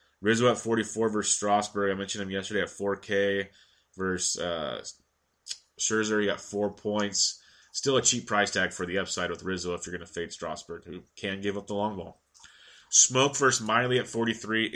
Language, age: English, 20-39